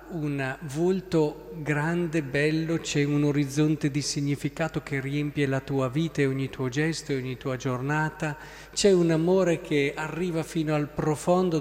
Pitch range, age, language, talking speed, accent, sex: 135-175 Hz, 50-69, Italian, 155 wpm, native, male